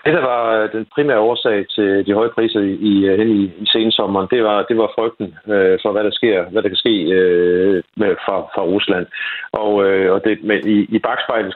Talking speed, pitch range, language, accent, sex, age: 215 wpm, 100-115 Hz, Danish, native, male, 50-69